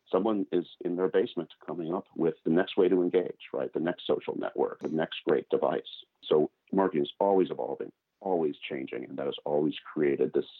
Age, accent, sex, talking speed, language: 50-69, American, male, 200 wpm, English